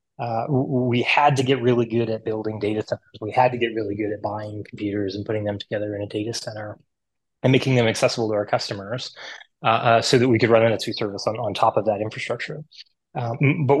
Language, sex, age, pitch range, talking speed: English, male, 20-39, 110-135 Hz, 230 wpm